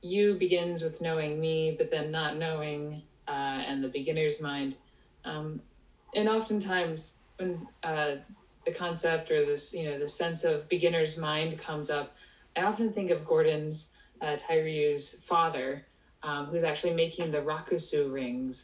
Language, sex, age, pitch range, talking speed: English, female, 20-39, 150-180 Hz, 150 wpm